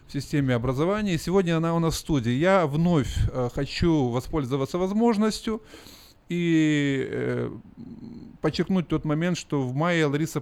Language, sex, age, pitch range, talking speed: Russian, male, 30-49, 120-165 Hz, 120 wpm